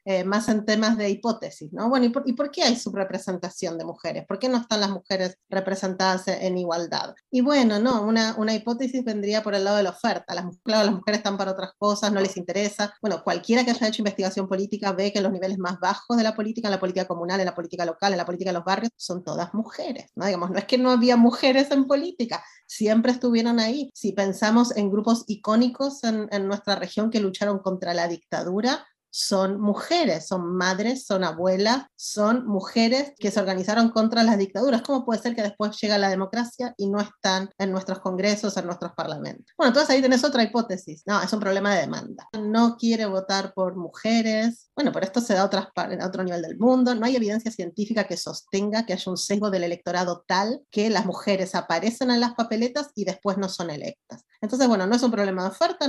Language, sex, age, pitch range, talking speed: Spanish, female, 30-49, 190-235 Hz, 220 wpm